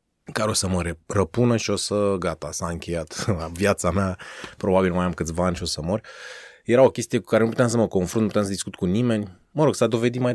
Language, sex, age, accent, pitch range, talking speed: Romanian, male, 20-39, native, 85-120 Hz, 250 wpm